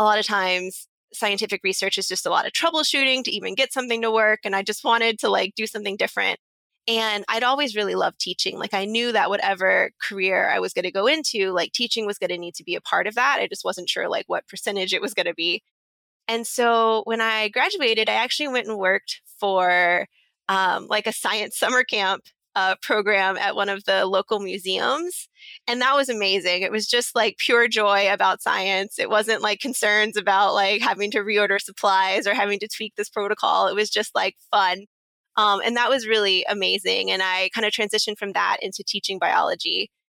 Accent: American